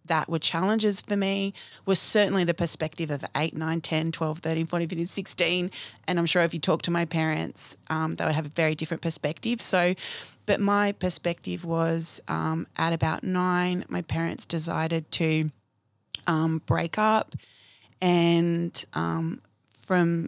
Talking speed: 160 wpm